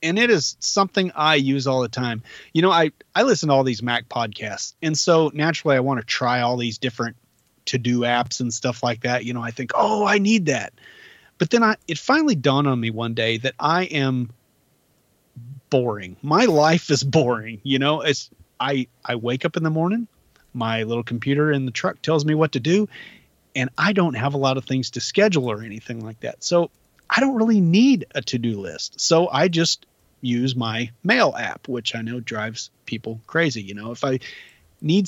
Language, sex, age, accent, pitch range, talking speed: English, male, 30-49, American, 120-160 Hz, 210 wpm